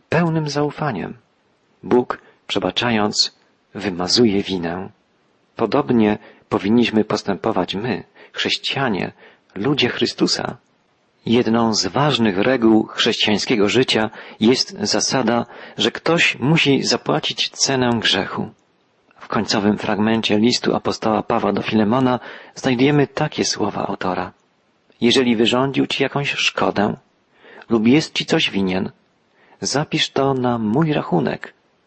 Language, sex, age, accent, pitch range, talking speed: Polish, male, 40-59, native, 105-135 Hz, 100 wpm